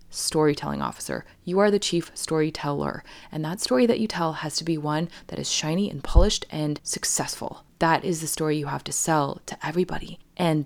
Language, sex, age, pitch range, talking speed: English, female, 20-39, 150-200 Hz, 195 wpm